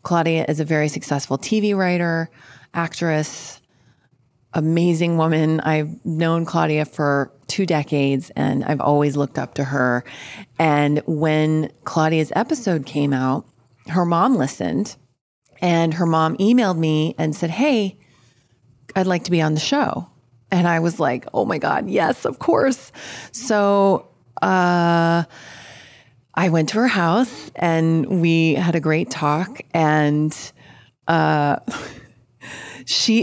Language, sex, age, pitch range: English, female, 30-49, 140-170 Hz